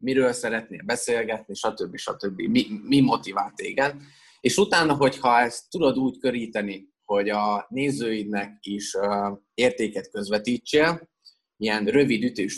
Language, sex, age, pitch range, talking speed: Hungarian, male, 20-39, 105-135 Hz, 125 wpm